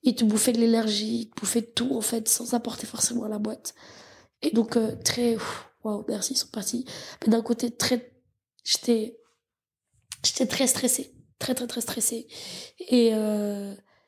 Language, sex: French, female